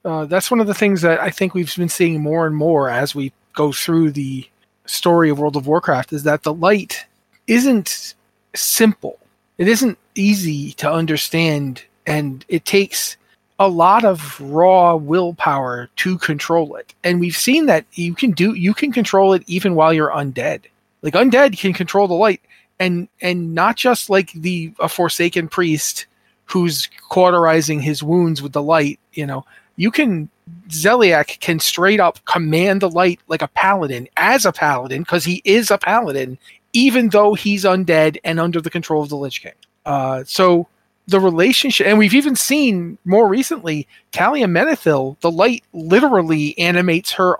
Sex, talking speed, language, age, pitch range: male, 170 wpm, English, 30-49, 155-195 Hz